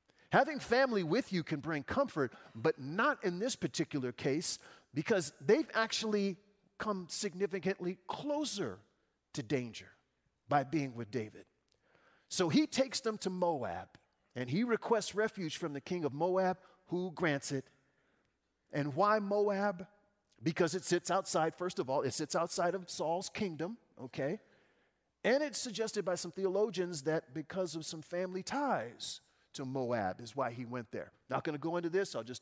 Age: 40-59